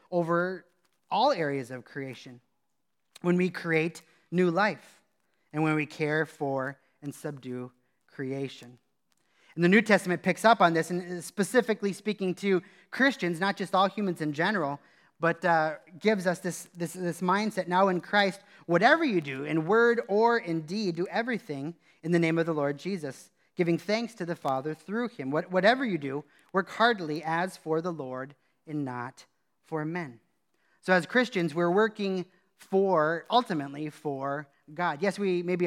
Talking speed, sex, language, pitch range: 160 wpm, male, English, 150-190 Hz